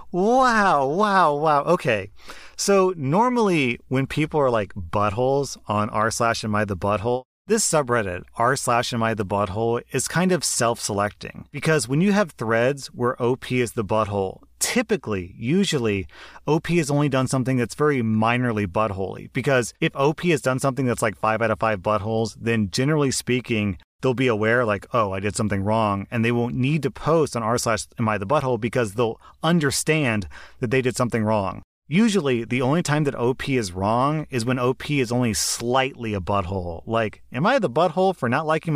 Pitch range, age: 110-150 Hz, 30-49